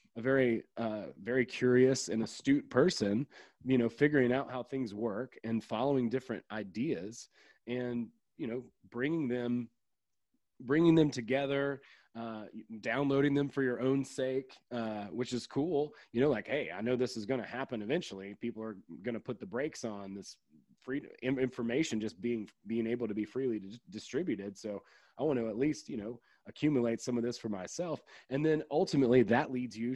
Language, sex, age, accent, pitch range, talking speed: English, male, 30-49, American, 110-135 Hz, 180 wpm